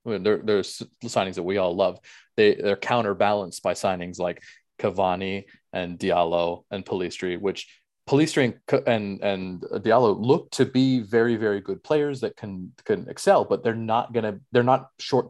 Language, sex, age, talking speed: English, male, 30-49, 170 wpm